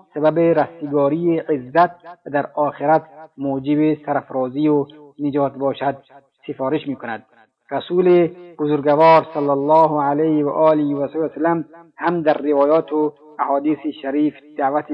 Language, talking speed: Persian, 105 wpm